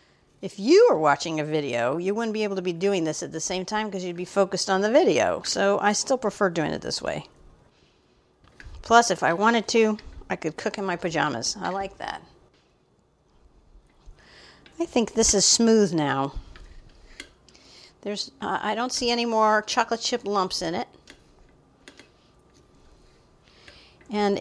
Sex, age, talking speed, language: female, 50-69, 160 wpm, English